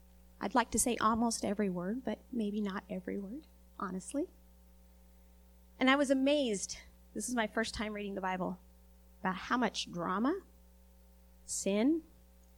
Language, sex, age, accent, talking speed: English, female, 30-49, American, 145 wpm